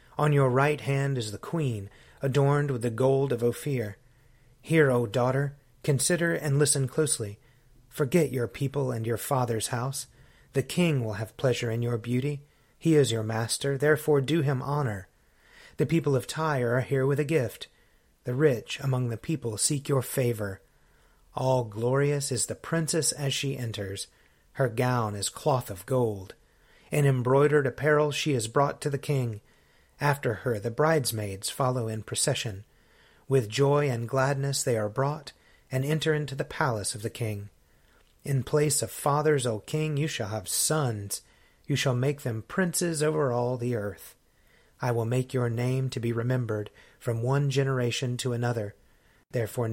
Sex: male